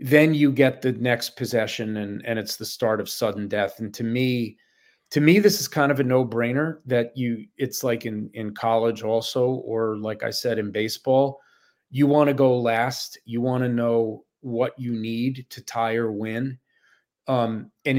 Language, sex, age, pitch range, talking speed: English, male, 30-49, 115-130 Hz, 195 wpm